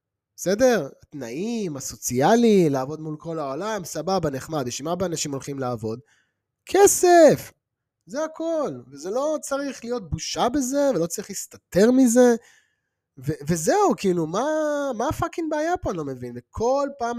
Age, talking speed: 30-49, 145 wpm